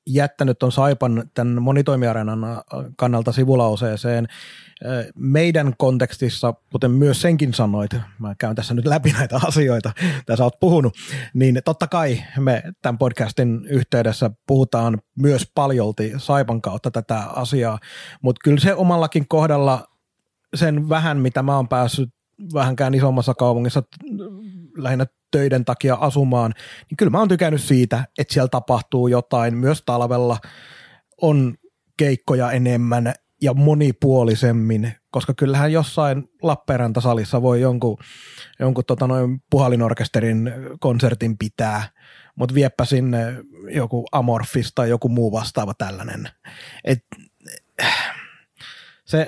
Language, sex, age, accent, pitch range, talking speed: Finnish, male, 30-49, native, 120-150 Hz, 120 wpm